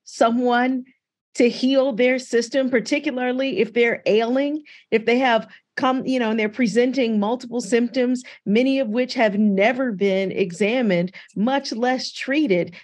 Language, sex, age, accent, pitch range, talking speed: English, female, 40-59, American, 210-265 Hz, 140 wpm